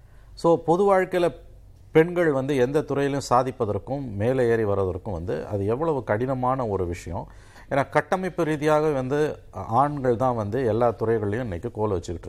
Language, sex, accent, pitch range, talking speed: Tamil, male, native, 100-135 Hz, 140 wpm